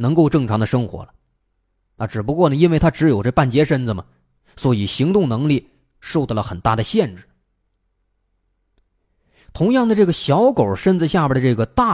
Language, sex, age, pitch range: Chinese, male, 20-39, 95-155 Hz